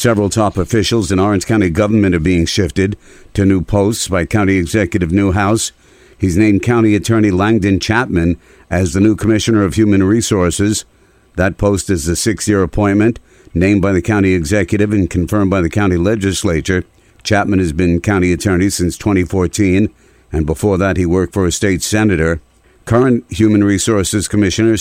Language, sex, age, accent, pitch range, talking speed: English, male, 60-79, American, 90-105 Hz, 160 wpm